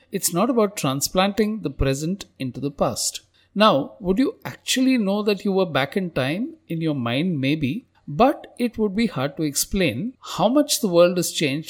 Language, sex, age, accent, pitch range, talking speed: English, male, 50-69, Indian, 150-215 Hz, 190 wpm